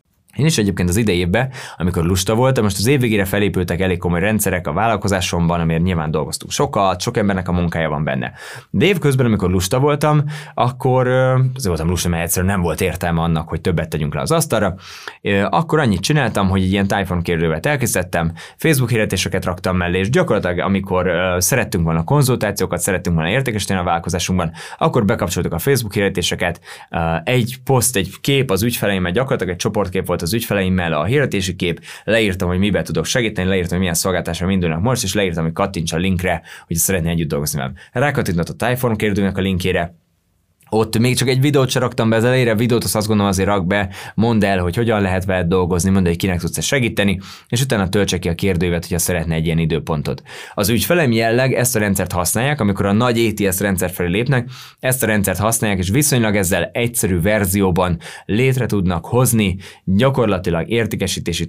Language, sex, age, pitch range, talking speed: Hungarian, male, 20-39, 90-115 Hz, 180 wpm